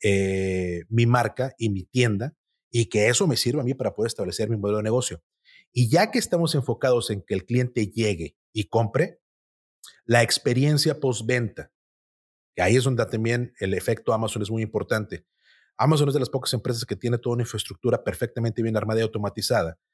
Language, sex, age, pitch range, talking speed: Spanish, male, 30-49, 110-140 Hz, 185 wpm